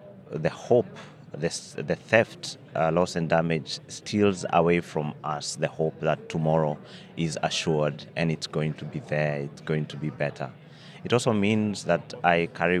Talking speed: 170 wpm